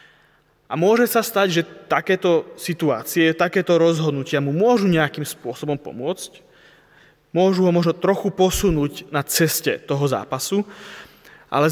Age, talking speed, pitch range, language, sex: 20-39, 125 wpm, 145-170 Hz, Slovak, male